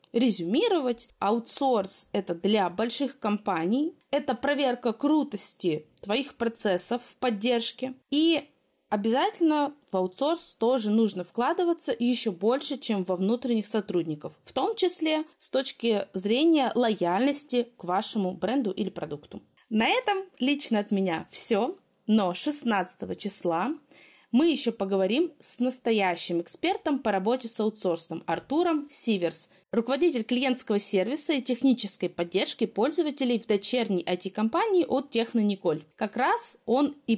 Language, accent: Russian, native